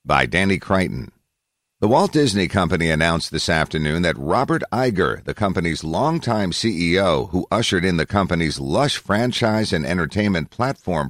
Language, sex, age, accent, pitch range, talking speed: English, male, 50-69, American, 80-105 Hz, 145 wpm